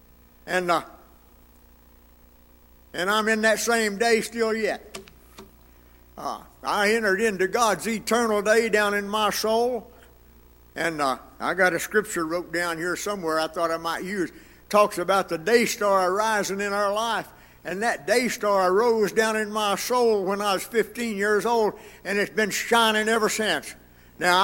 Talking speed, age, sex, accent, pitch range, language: 165 wpm, 60-79, male, American, 145-230 Hz, English